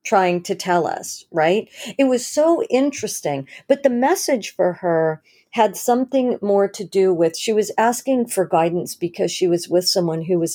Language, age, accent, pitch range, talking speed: English, 50-69, American, 170-215 Hz, 180 wpm